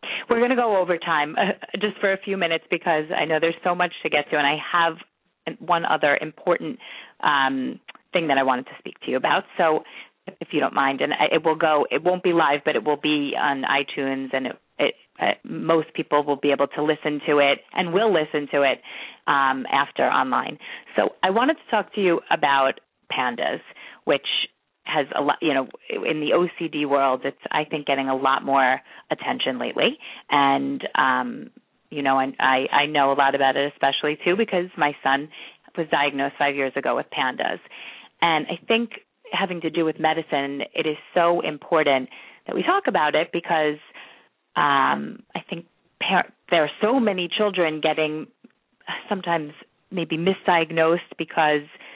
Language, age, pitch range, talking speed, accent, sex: English, 30-49, 145-175 Hz, 185 wpm, American, female